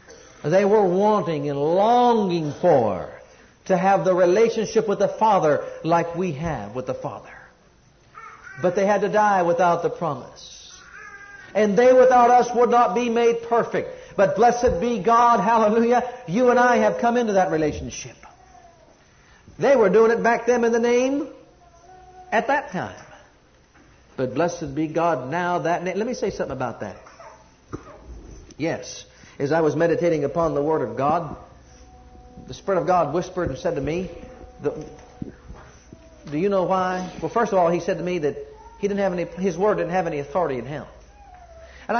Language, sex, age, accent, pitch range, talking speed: English, male, 60-79, American, 170-235 Hz, 170 wpm